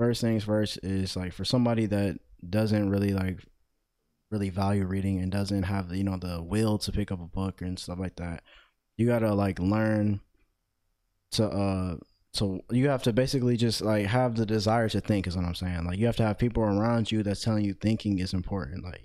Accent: American